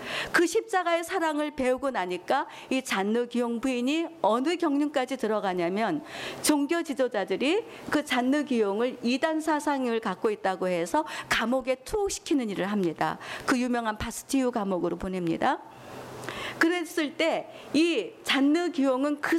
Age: 50-69